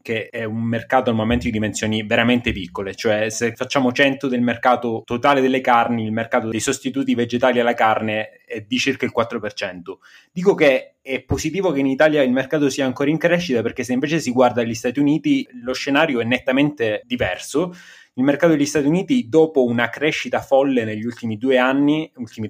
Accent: native